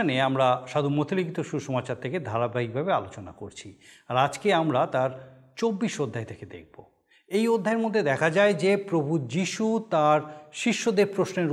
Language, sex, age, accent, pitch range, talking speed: Bengali, male, 50-69, native, 145-195 Hz, 140 wpm